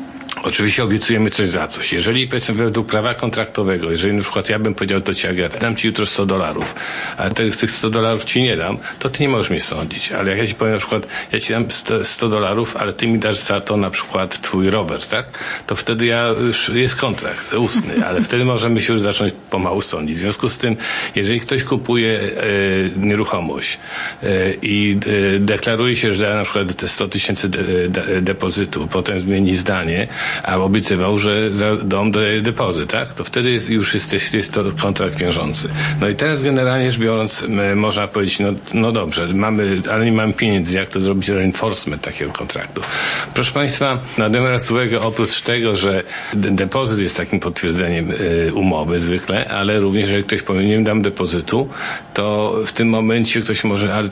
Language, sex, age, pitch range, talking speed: Polish, male, 50-69, 95-115 Hz, 185 wpm